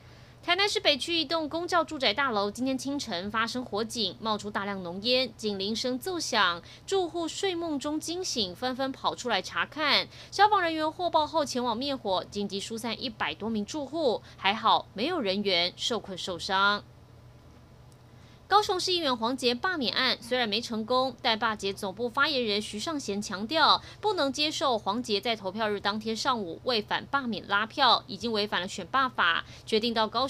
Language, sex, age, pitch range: Chinese, female, 20-39, 205-295 Hz